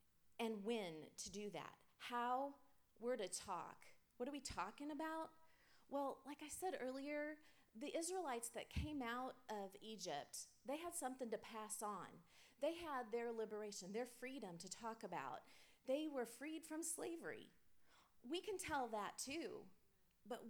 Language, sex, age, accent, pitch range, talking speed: English, female, 30-49, American, 210-275 Hz, 150 wpm